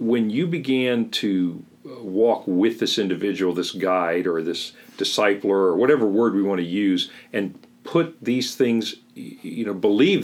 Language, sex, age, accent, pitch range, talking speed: English, male, 50-69, American, 90-120 Hz, 160 wpm